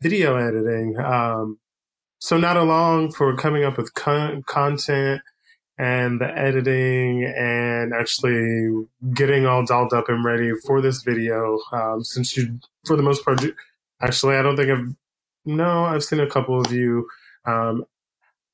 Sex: male